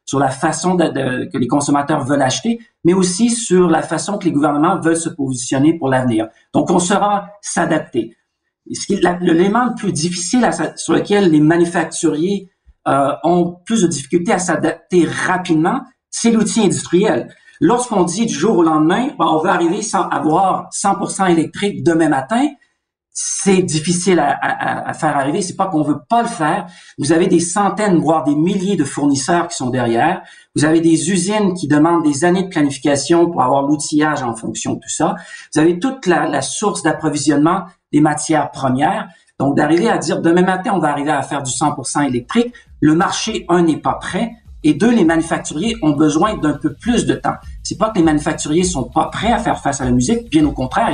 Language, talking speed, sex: French, 200 wpm, male